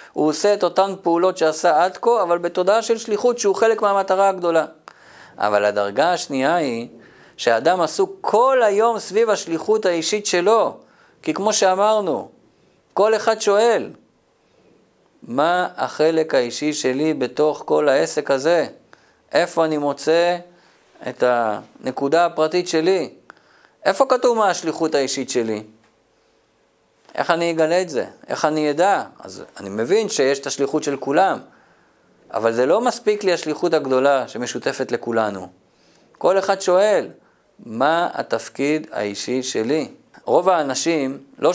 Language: Hebrew